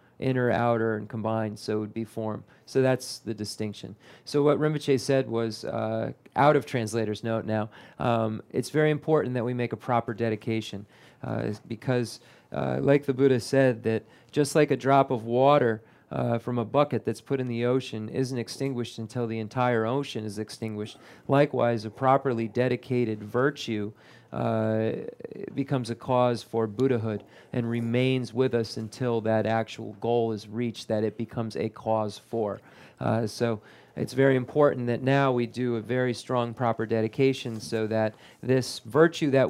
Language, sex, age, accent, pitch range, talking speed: English, male, 40-59, American, 110-130 Hz, 170 wpm